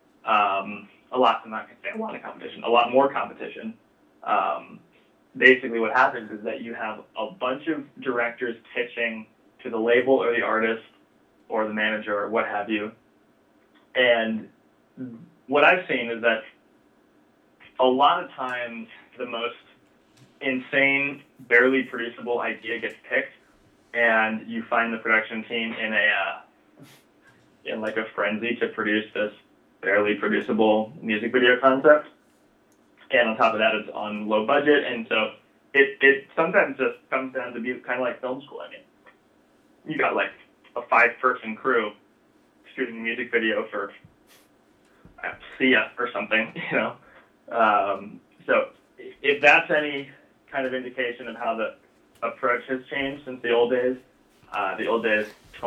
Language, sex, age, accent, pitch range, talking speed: English, male, 20-39, American, 110-130 Hz, 155 wpm